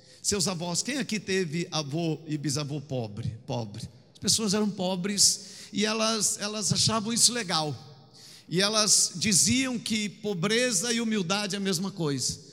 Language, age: Portuguese, 50-69